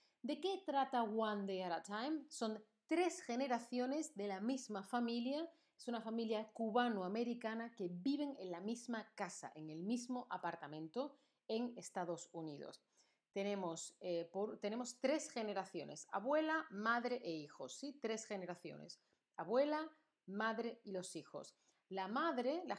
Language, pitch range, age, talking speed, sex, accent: Spanish, 195-250 Hz, 30-49, 140 wpm, female, Spanish